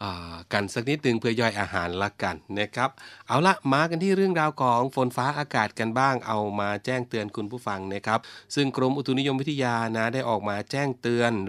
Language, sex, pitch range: Thai, male, 100-125 Hz